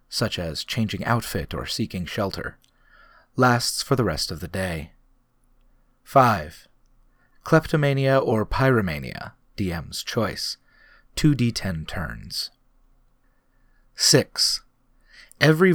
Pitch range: 95-135 Hz